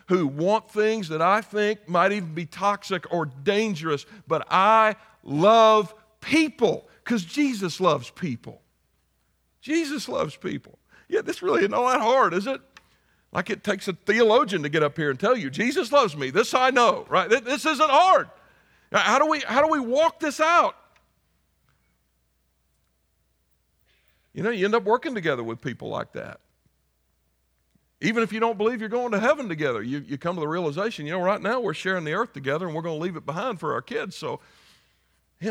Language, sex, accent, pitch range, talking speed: English, male, American, 150-225 Hz, 185 wpm